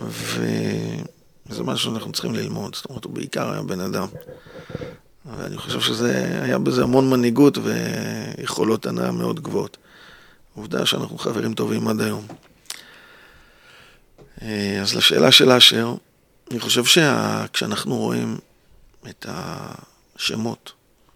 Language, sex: Hebrew, male